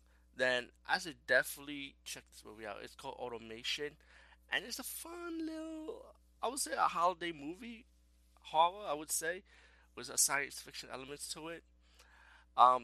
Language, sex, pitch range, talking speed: English, male, 105-130 Hz, 160 wpm